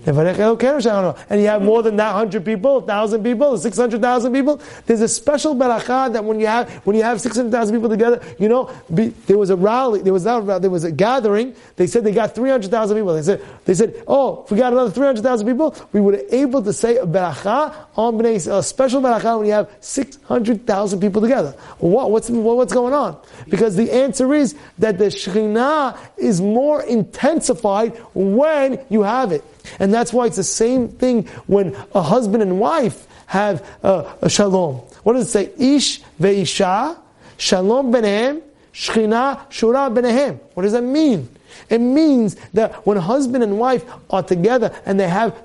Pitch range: 195-245 Hz